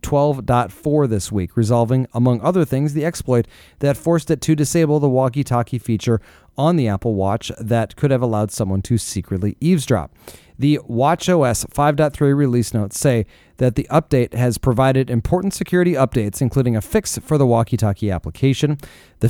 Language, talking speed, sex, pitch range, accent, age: English, 155 wpm, male, 110-145 Hz, American, 30-49